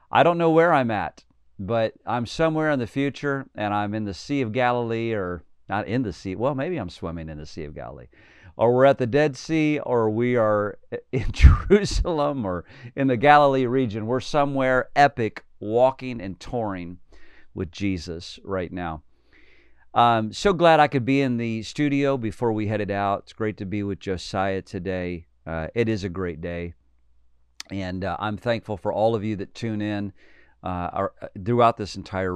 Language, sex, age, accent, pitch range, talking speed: English, male, 50-69, American, 90-115 Hz, 185 wpm